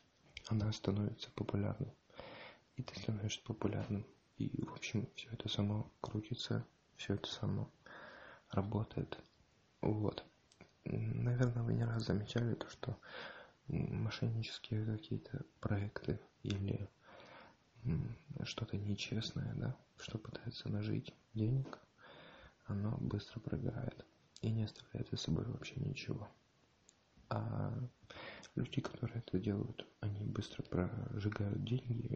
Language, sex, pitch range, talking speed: English, male, 105-125 Hz, 105 wpm